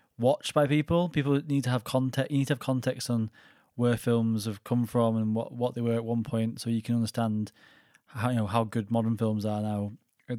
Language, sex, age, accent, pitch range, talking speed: English, male, 20-39, British, 115-130 Hz, 235 wpm